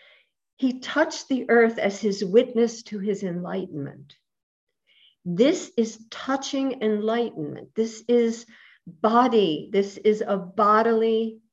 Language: English